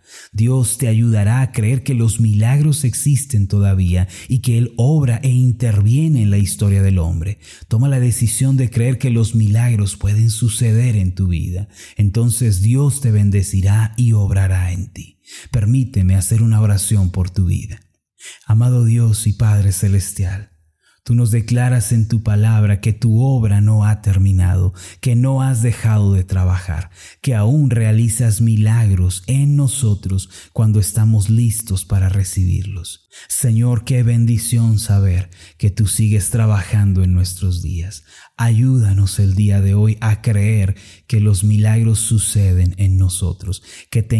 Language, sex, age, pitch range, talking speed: Spanish, male, 30-49, 95-120 Hz, 150 wpm